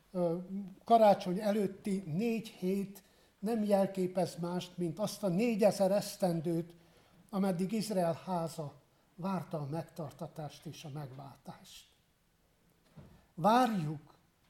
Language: Hungarian